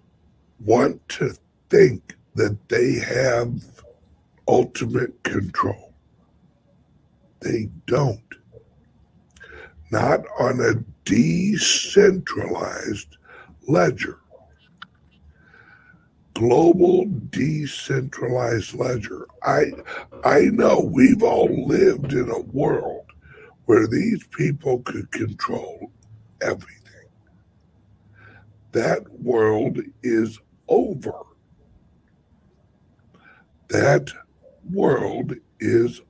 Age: 60-79